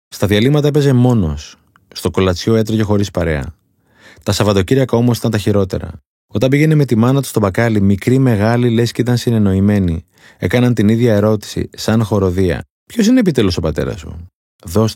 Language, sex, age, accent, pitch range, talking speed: Greek, male, 30-49, native, 90-125 Hz, 170 wpm